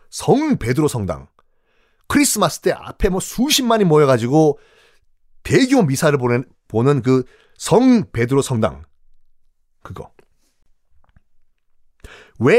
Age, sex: 30-49, male